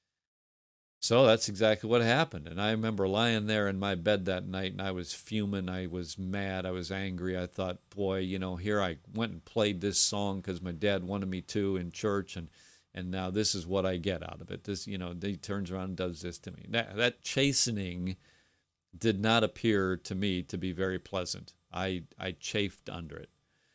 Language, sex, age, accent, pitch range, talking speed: English, male, 50-69, American, 90-110 Hz, 210 wpm